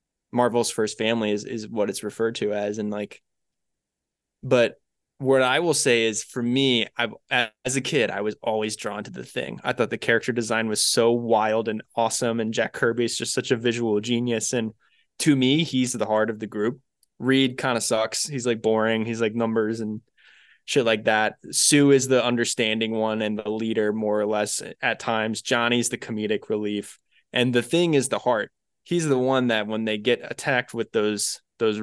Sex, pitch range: male, 110-130 Hz